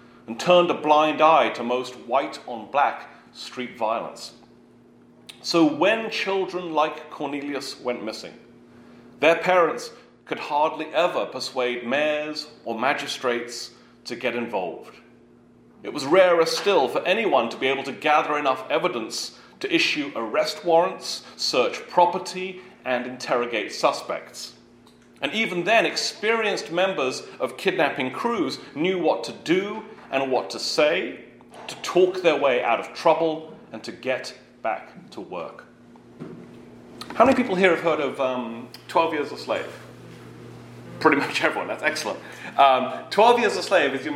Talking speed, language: 140 wpm, English